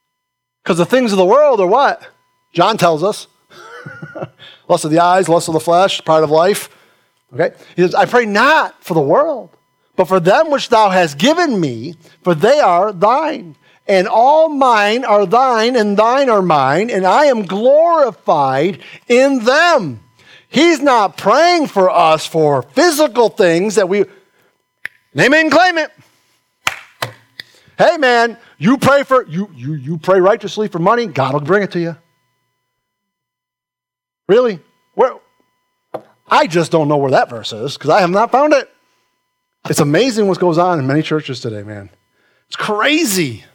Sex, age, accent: male, 50-69, American